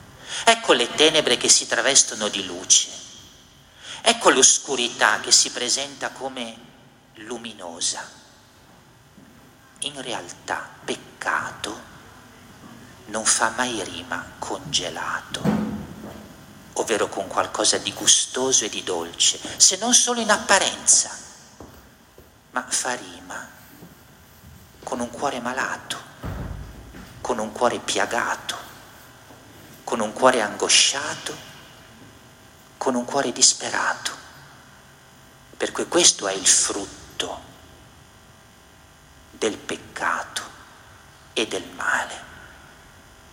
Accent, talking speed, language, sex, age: native, 90 wpm, Italian, male, 40-59